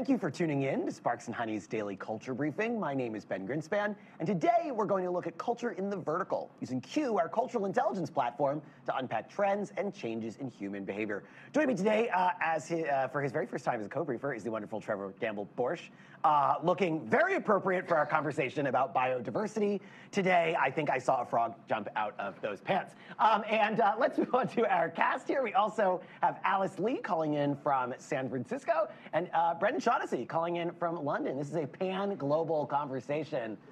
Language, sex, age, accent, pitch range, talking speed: English, male, 30-49, American, 140-215 Hz, 210 wpm